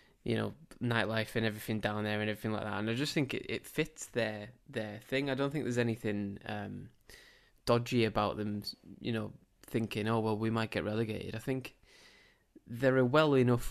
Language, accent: English, British